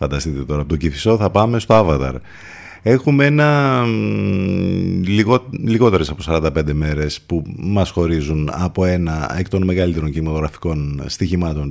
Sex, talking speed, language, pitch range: male, 125 wpm, Greek, 80-115 Hz